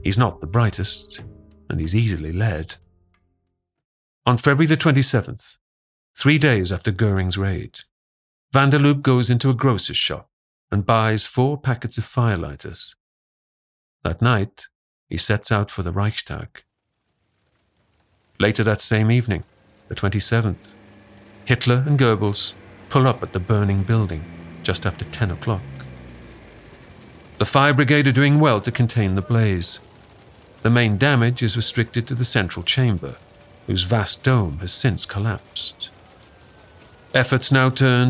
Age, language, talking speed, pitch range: 50-69, English, 135 wpm, 95-125 Hz